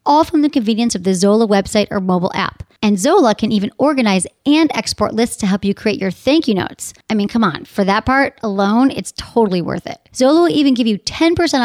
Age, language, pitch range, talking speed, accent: 40-59, English, 190-265 Hz, 230 wpm, American